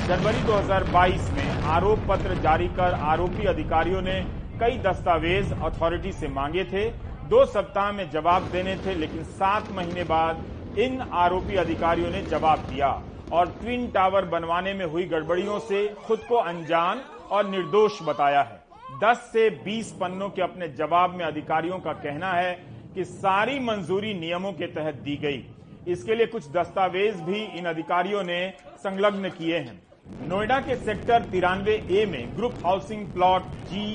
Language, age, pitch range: Hindi, 40-59, 170-205 Hz